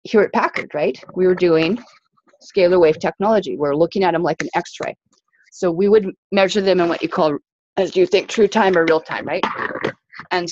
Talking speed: 210 wpm